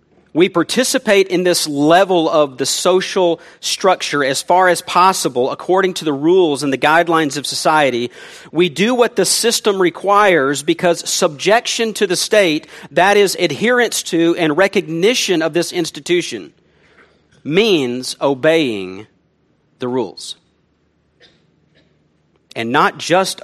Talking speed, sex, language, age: 125 wpm, male, English, 40-59